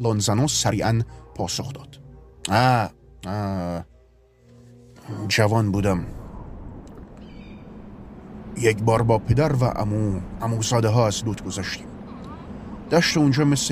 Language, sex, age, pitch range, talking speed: Persian, male, 30-49, 105-125 Hz, 95 wpm